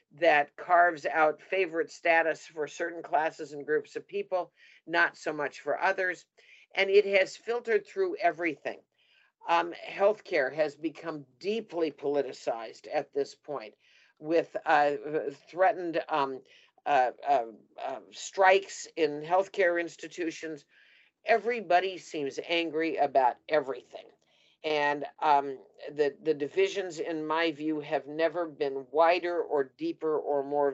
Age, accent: 50-69, American